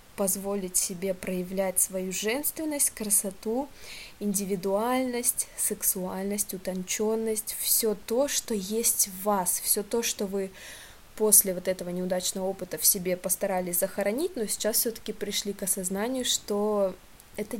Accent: native